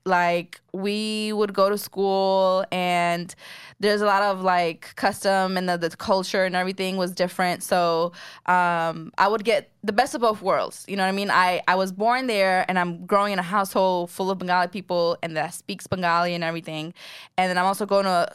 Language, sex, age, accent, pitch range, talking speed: English, female, 10-29, American, 175-205 Hz, 210 wpm